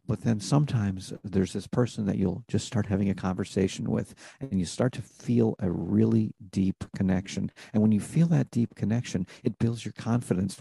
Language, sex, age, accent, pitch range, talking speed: English, male, 50-69, American, 100-120 Hz, 190 wpm